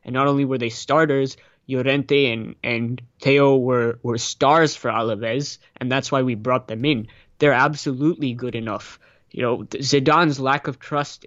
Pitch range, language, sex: 125-140 Hz, English, male